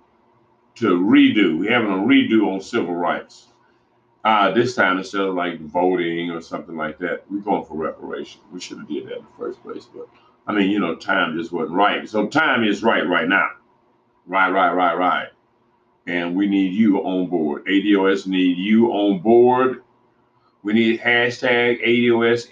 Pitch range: 100-125 Hz